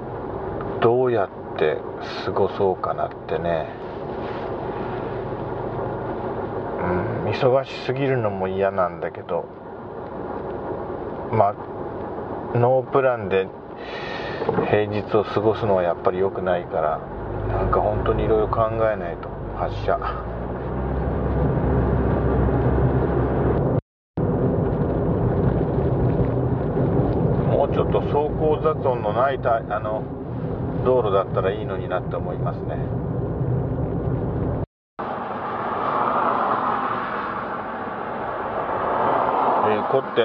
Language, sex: Japanese, male